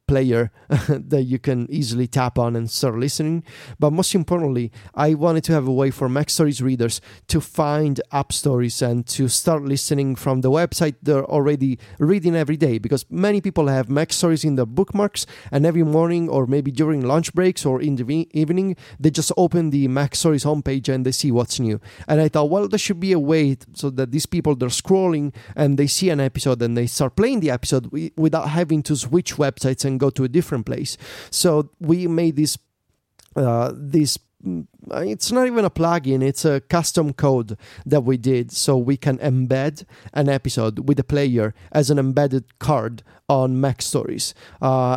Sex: male